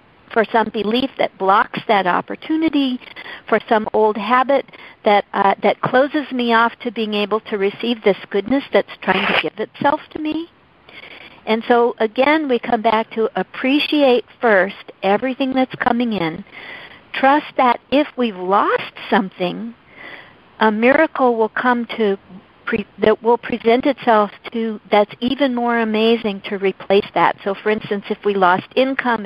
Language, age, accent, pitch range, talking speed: English, 50-69, American, 205-255 Hz, 150 wpm